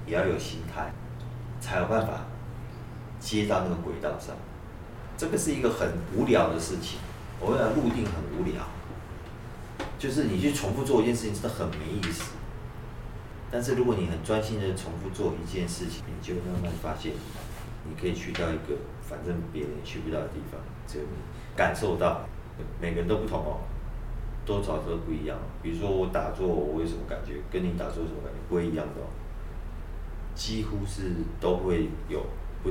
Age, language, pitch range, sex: 40-59, Chinese, 80-105 Hz, male